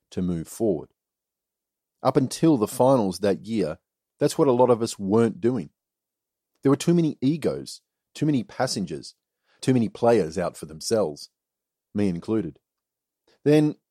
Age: 40-59